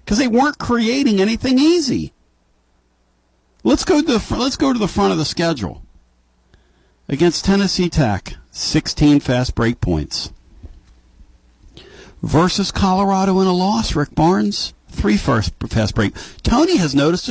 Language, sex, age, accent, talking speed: English, male, 50-69, American, 140 wpm